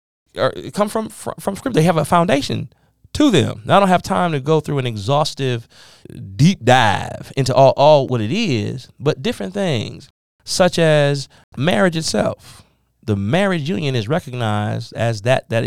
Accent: American